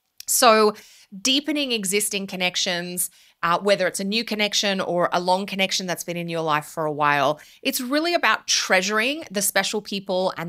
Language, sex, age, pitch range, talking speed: English, female, 20-39, 175-235 Hz, 170 wpm